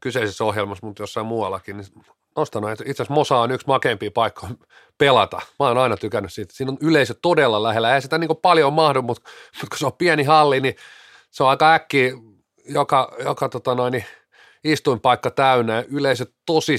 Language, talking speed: Finnish, 175 wpm